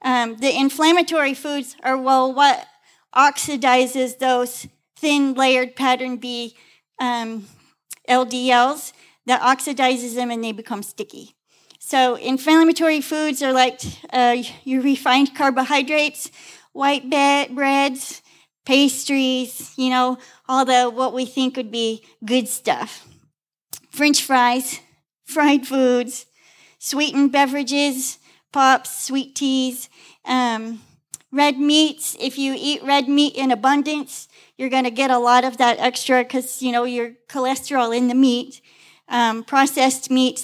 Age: 40-59